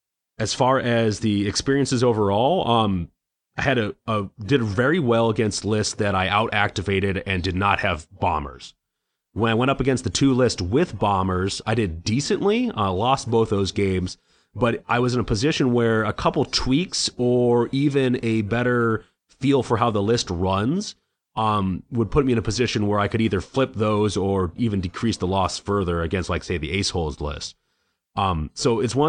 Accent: American